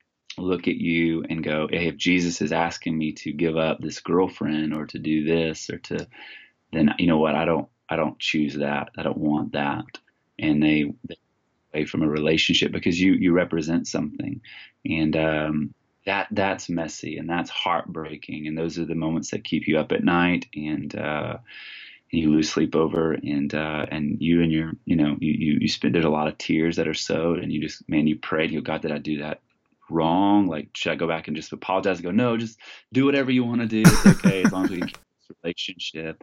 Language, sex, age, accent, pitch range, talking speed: English, male, 30-49, American, 75-85 Hz, 220 wpm